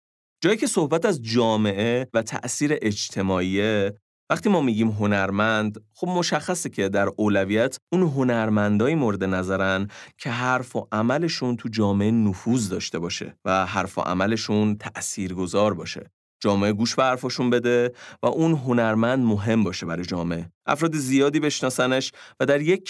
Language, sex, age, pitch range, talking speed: Persian, male, 30-49, 100-140 Hz, 145 wpm